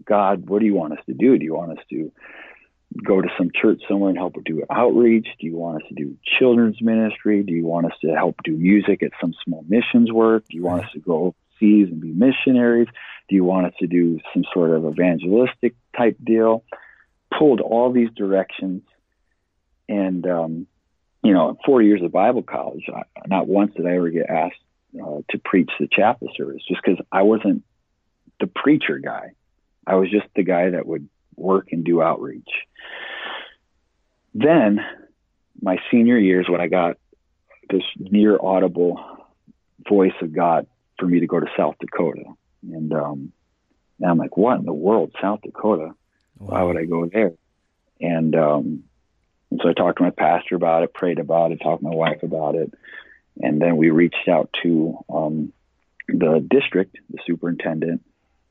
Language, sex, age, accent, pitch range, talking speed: English, male, 50-69, American, 85-105 Hz, 180 wpm